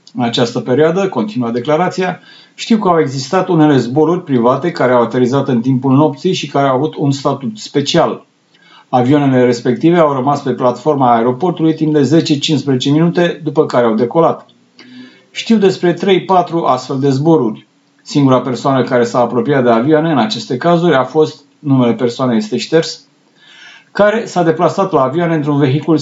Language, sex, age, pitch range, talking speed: Romanian, male, 50-69, 125-170 Hz, 160 wpm